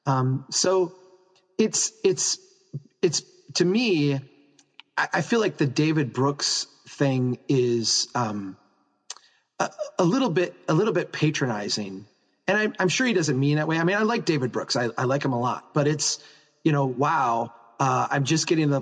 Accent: American